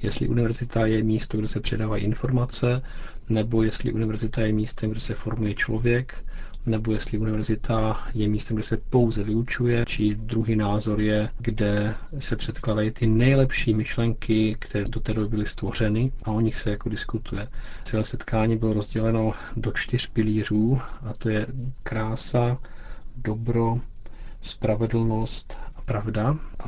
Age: 40-59